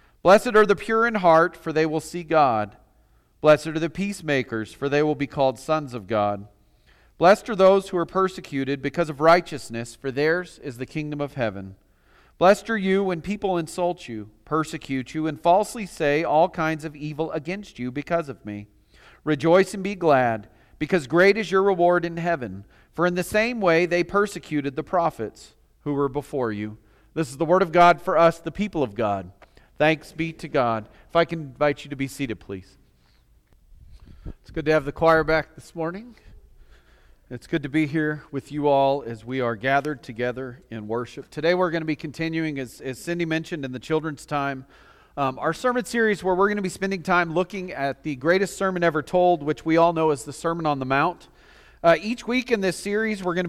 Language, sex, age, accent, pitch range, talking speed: English, male, 40-59, American, 135-180 Hz, 205 wpm